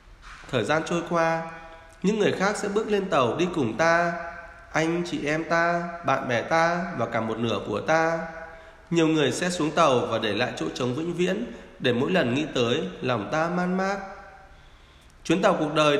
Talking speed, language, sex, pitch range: 195 wpm, Vietnamese, male, 125-185 Hz